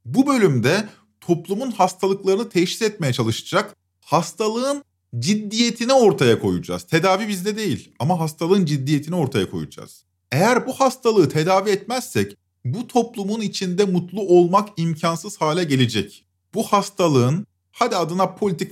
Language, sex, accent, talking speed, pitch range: Turkish, male, native, 120 wpm, 130-200 Hz